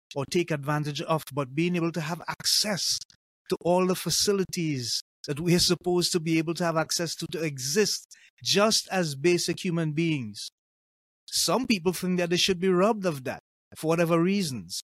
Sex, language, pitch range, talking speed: male, English, 145-180 Hz, 180 wpm